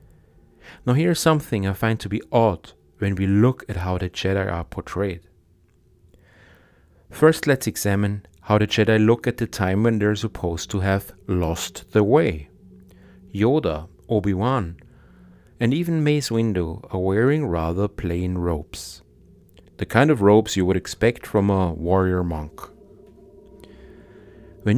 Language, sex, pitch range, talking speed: English, male, 90-110 Hz, 140 wpm